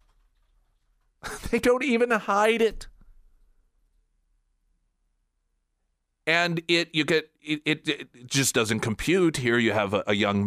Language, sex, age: English, male, 40-59